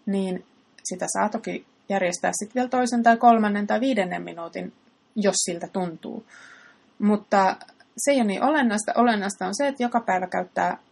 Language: Finnish